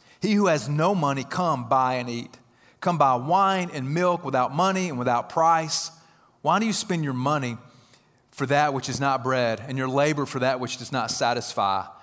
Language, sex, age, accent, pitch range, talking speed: English, male, 40-59, American, 120-155 Hz, 200 wpm